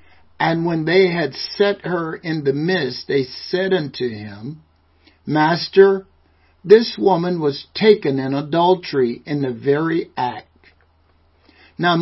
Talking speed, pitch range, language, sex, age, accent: 125 wpm, 130-180 Hz, English, male, 60-79, American